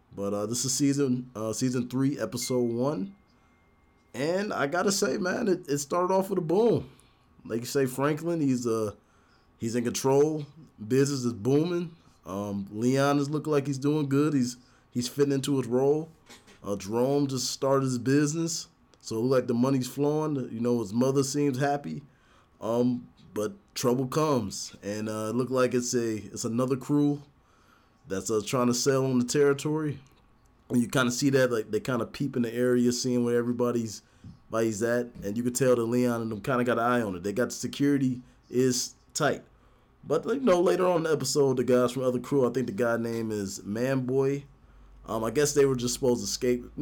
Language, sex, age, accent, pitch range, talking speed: English, male, 20-39, American, 115-140 Hz, 205 wpm